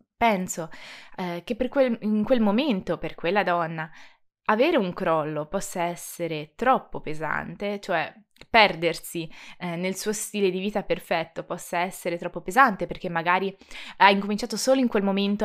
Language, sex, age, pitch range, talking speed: Italian, female, 20-39, 175-220 Hz, 150 wpm